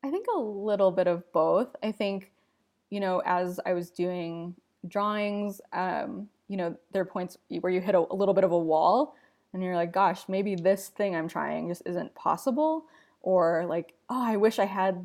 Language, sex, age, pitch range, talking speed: English, female, 20-39, 175-205 Hz, 205 wpm